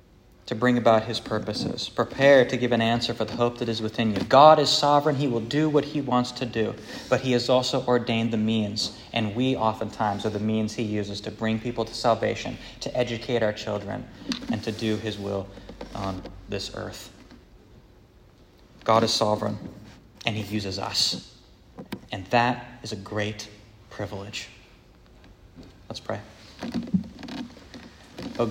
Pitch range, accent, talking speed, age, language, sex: 105-130 Hz, American, 160 wpm, 20-39, English, male